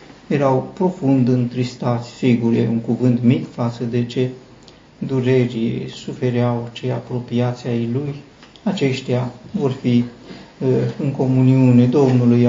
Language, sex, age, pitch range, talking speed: Romanian, male, 50-69, 120-140 Hz, 115 wpm